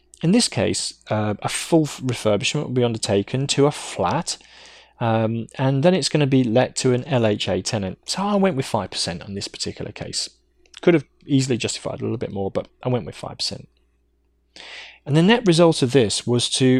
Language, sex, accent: English, male, British